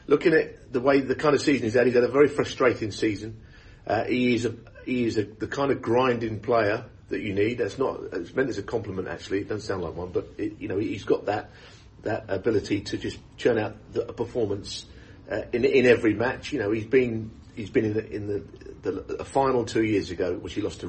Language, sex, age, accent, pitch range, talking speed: English, male, 40-59, British, 95-120 Hz, 240 wpm